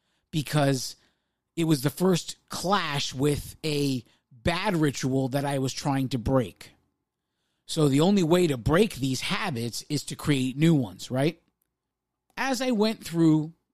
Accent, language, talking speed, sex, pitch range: American, English, 150 wpm, male, 145-195 Hz